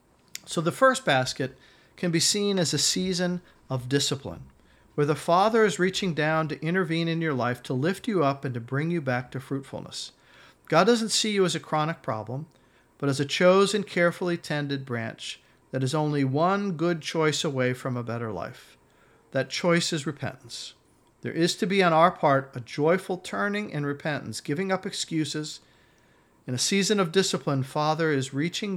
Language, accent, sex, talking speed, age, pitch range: English, American, male, 180 wpm, 50-69, 130-170 Hz